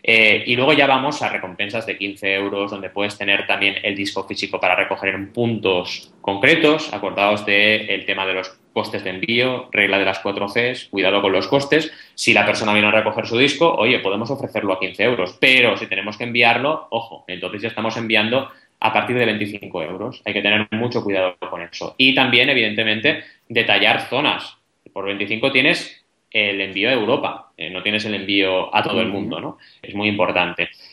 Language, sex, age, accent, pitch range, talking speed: Spanish, male, 20-39, Spanish, 100-120 Hz, 190 wpm